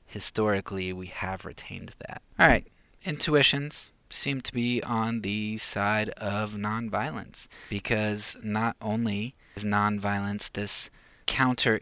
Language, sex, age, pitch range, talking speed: English, male, 20-39, 95-110 Hz, 115 wpm